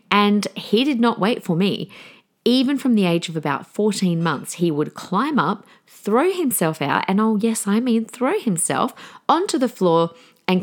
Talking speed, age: 185 wpm, 40-59